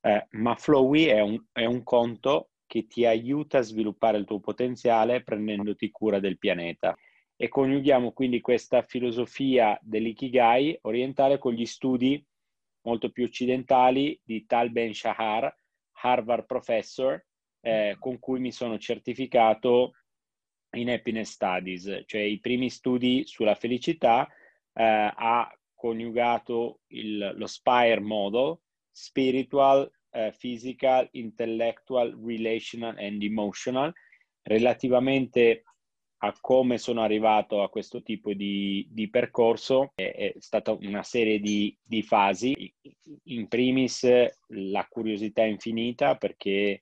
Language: Italian